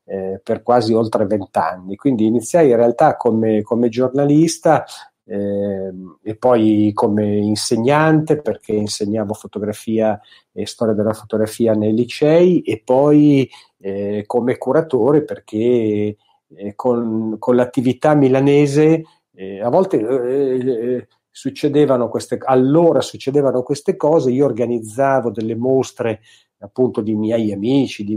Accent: native